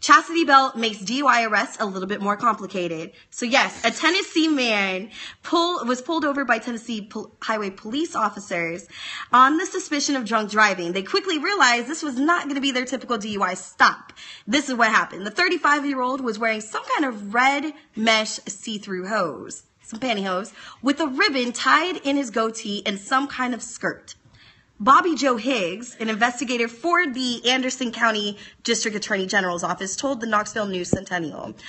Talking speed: 170 wpm